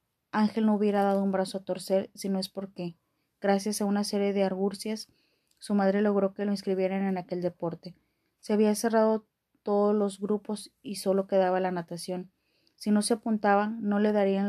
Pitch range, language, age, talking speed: 185-210 Hz, Spanish, 20-39, 185 wpm